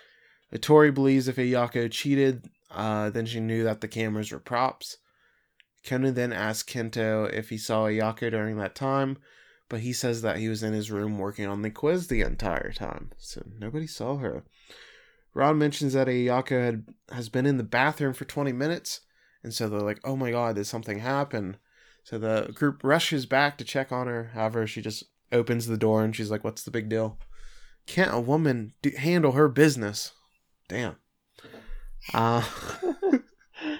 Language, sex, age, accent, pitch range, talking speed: English, male, 20-39, American, 110-145 Hz, 175 wpm